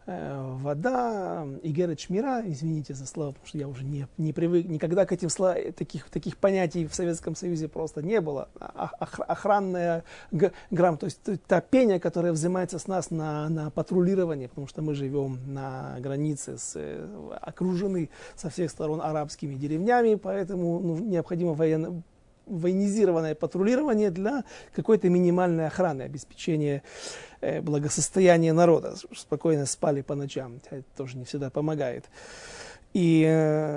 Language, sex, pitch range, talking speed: Russian, male, 145-180 Hz, 135 wpm